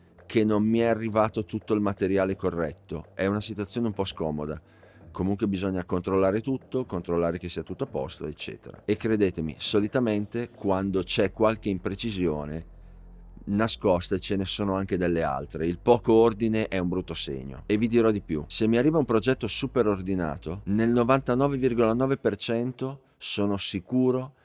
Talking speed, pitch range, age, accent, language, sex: 155 wpm, 90-115 Hz, 40-59, native, Italian, male